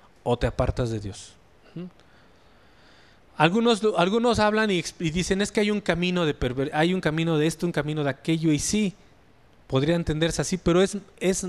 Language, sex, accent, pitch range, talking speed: English, male, Mexican, 140-180 Hz, 190 wpm